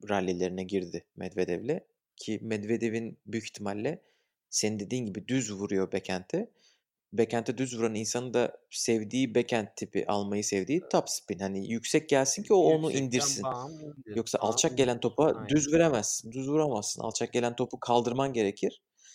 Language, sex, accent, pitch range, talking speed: Turkish, male, native, 115-155 Hz, 140 wpm